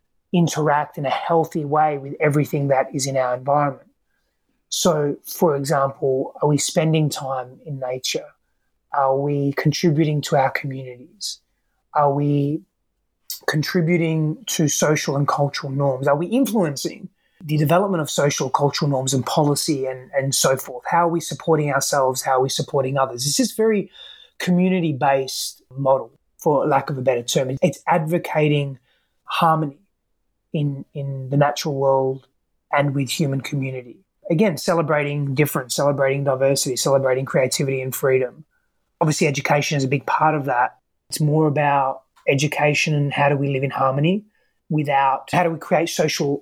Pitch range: 135-160 Hz